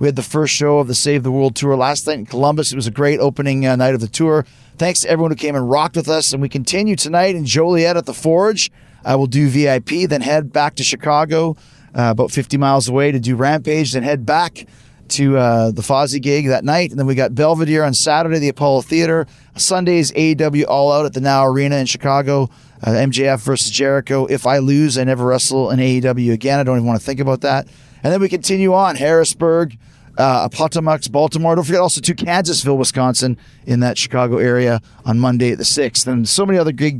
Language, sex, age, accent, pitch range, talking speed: English, male, 30-49, American, 130-155 Hz, 225 wpm